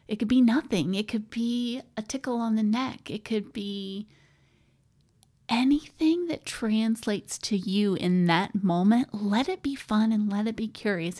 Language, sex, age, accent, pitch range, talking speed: English, female, 30-49, American, 205-255 Hz, 170 wpm